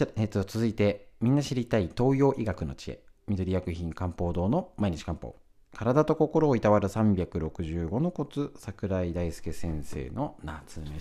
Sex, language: male, Japanese